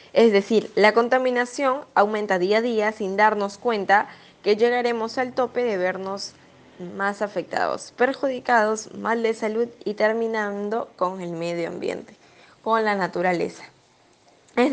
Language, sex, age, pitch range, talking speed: Spanish, female, 10-29, 195-235 Hz, 135 wpm